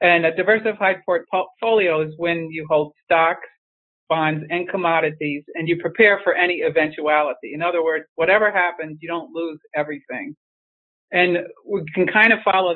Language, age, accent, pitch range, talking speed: English, 50-69, American, 150-180 Hz, 155 wpm